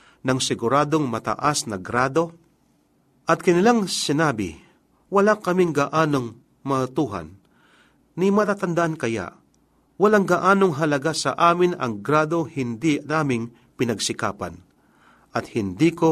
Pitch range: 125-170 Hz